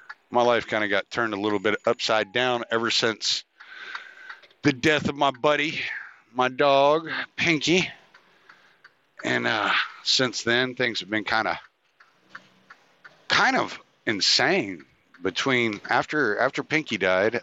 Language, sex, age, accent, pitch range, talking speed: English, male, 50-69, American, 100-125 Hz, 130 wpm